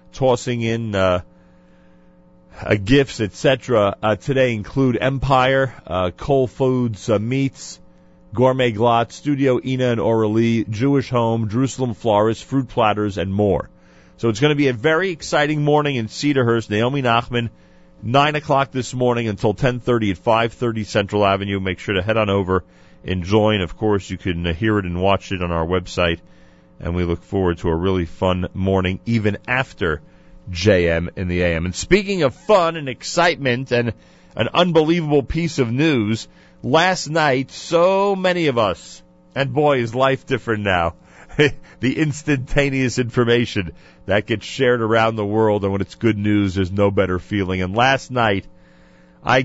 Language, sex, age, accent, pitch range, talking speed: English, male, 40-59, American, 90-130 Hz, 160 wpm